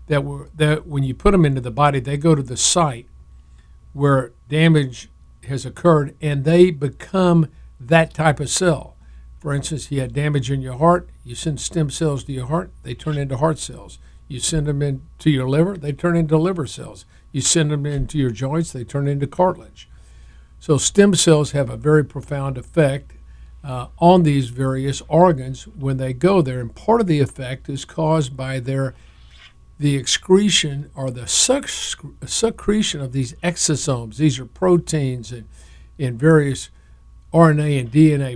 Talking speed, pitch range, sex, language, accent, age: 175 wpm, 125-155 Hz, male, English, American, 50-69